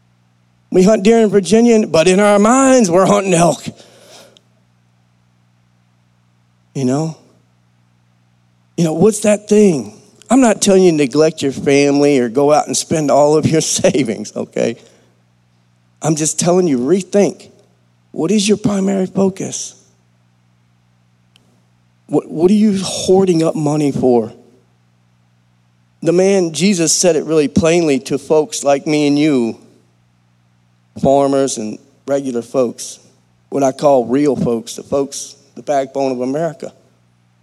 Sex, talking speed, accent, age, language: male, 135 wpm, American, 40-59, English